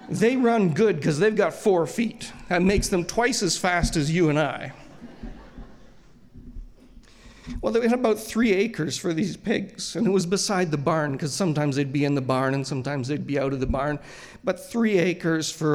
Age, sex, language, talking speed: 40-59, male, English, 200 wpm